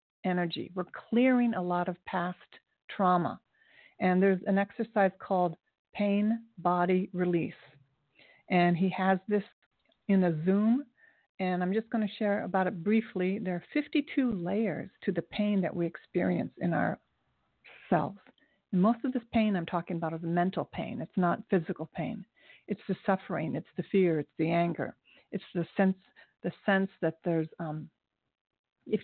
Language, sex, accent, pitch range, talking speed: English, female, American, 175-220 Hz, 160 wpm